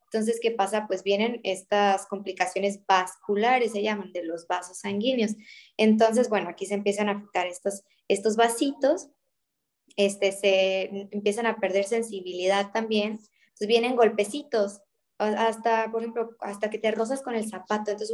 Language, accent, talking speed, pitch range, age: Spanish, Mexican, 150 wpm, 195-225 Hz, 20-39